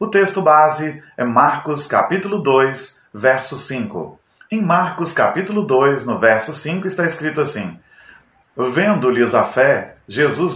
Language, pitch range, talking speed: Portuguese, 125-170 Hz, 130 wpm